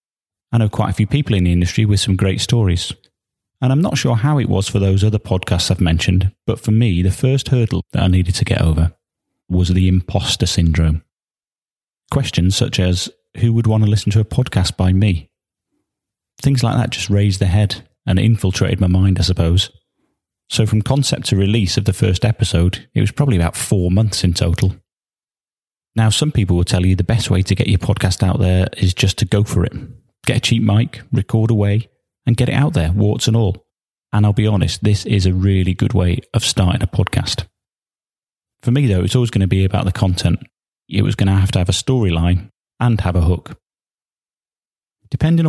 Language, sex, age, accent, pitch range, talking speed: English, male, 30-49, British, 90-115 Hz, 210 wpm